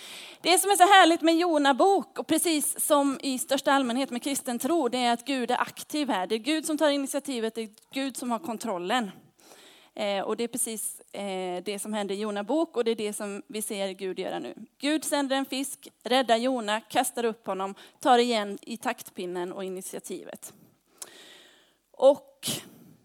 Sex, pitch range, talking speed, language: female, 215-300 Hz, 180 wpm, Swedish